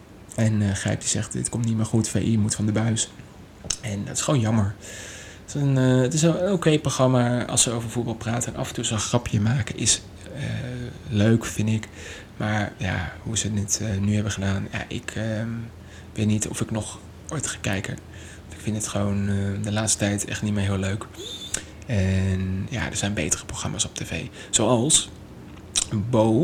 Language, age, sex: Dutch, 20-39, male